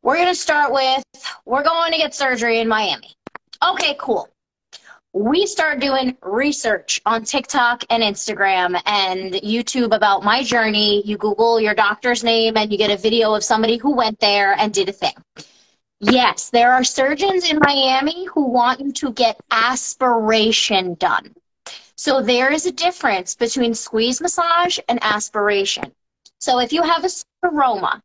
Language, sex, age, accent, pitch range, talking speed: English, female, 30-49, American, 220-290 Hz, 160 wpm